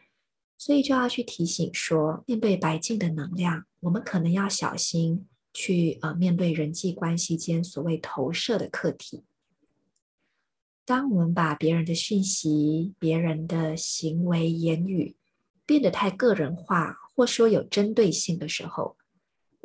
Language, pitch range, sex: Chinese, 165-205 Hz, female